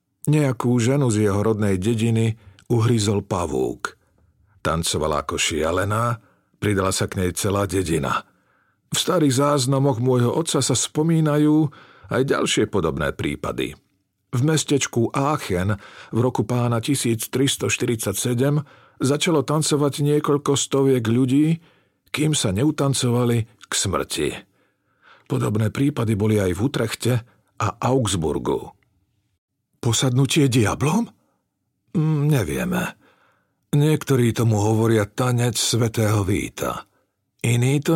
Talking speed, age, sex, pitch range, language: 100 wpm, 50-69, male, 100-140 Hz, Slovak